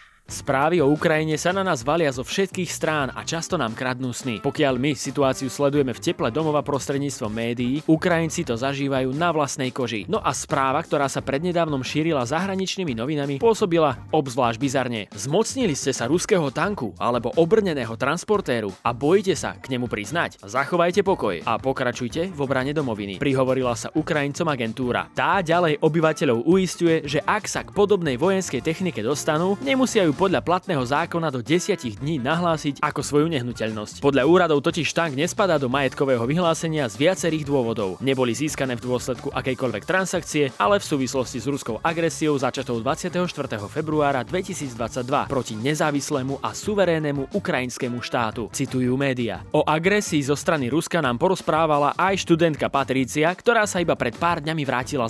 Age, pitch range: 20-39, 130-170 Hz